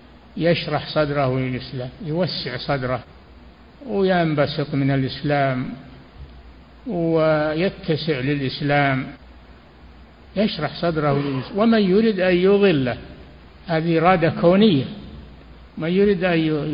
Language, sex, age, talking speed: Arabic, male, 60-79, 80 wpm